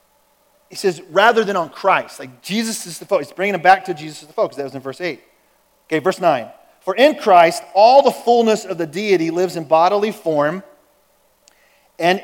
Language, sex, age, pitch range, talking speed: English, male, 40-59, 165-225 Hz, 205 wpm